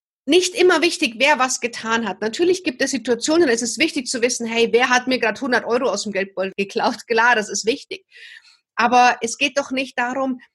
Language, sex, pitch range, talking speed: German, female, 210-270 Hz, 210 wpm